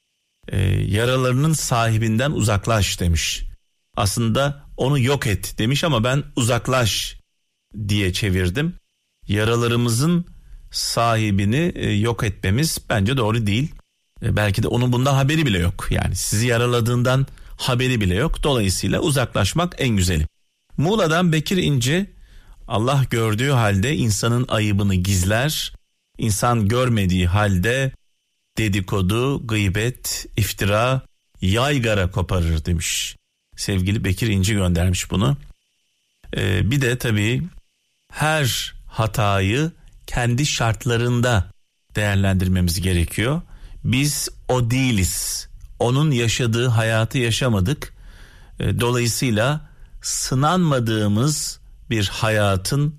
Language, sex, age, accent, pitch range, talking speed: Turkish, male, 40-59, native, 100-130 Hz, 95 wpm